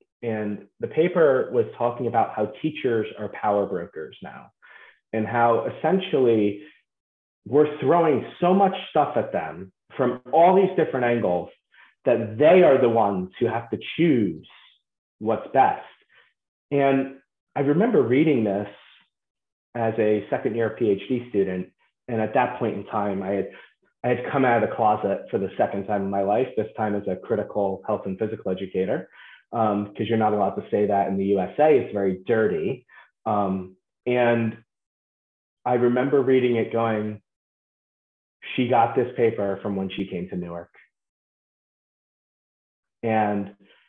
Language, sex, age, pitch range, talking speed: English, male, 30-49, 95-125 Hz, 150 wpm